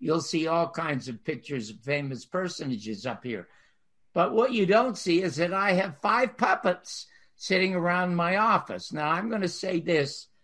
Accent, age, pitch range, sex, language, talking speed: American, 60-79, 145-195 Hz, male, English, 185 wpm